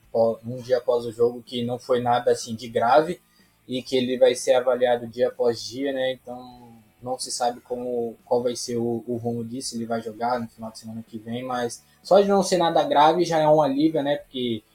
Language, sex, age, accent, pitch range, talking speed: Portuguese, male, 20-39, Brazilian, 120-145 Hz, 230 wpm